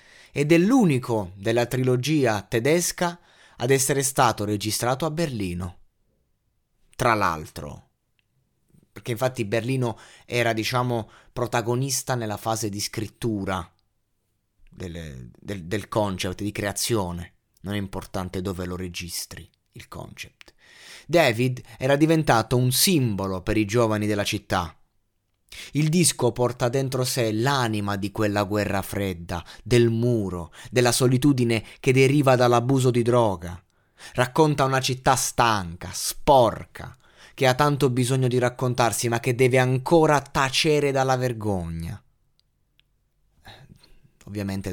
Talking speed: 115 wpm